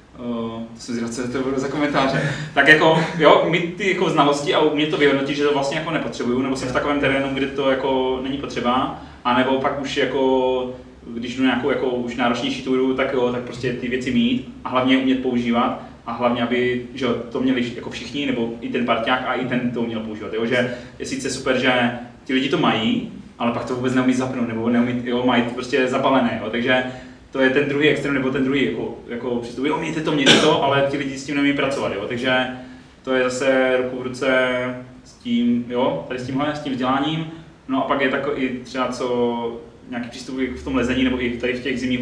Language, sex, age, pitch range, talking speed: Czech, male, 20-39, 125-135 Hz, 220 wpm